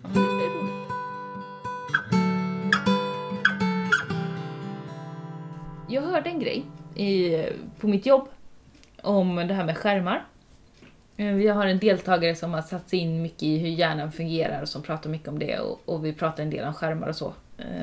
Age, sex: 30-49, female